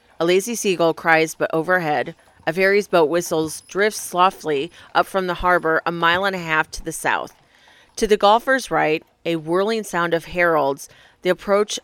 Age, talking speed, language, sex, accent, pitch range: 30-49, 175 wpm, English, female, American, 160-195 Hz